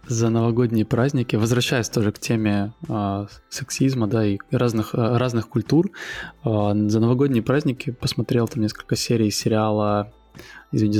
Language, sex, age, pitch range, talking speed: Russian, male, 20-39, 110-130 Hz, 130 wpm